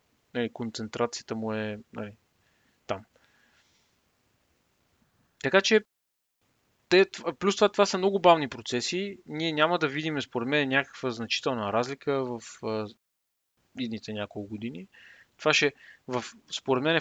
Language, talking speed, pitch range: Bulgarian, 115 wpm, 115-150 Hz